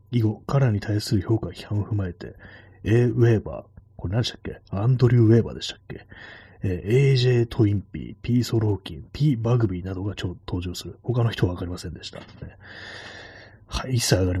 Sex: male